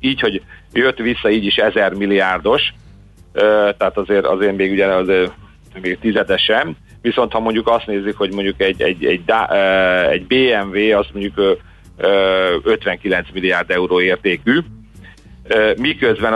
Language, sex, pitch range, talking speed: Hungarian, male, 95-110 Hz, 130 wpm